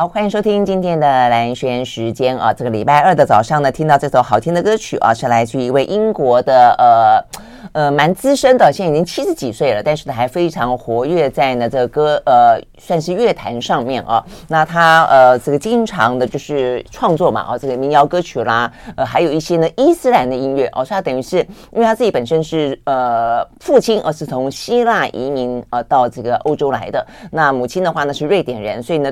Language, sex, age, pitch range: Chinese, female, 30-49, 130-185 Hz